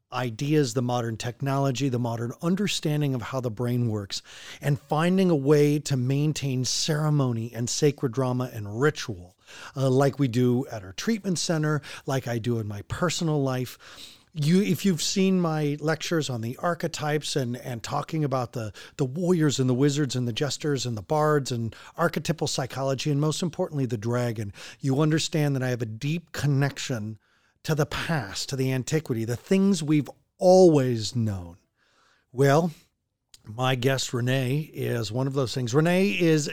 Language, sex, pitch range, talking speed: English, male, 125-165 Hz, 170 wpm